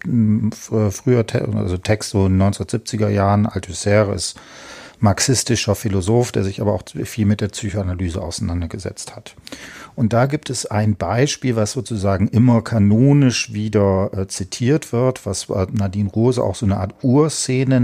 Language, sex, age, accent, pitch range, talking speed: German, male, 40-59, German, 105-130 Hz, 145 wpm